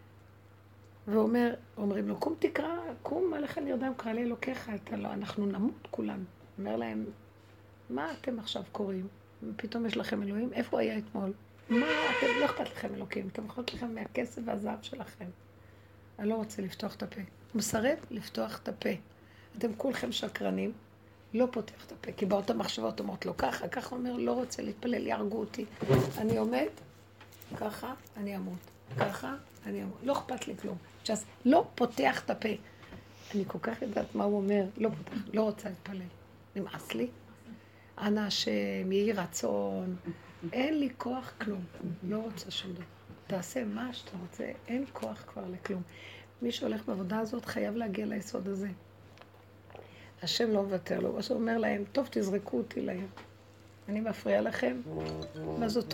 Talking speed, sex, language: 150 wpm, female, Hebrew